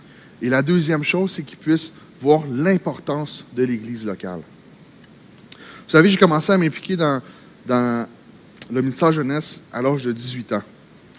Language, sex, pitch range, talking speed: French, male, 125-165 Hz, 155 wpm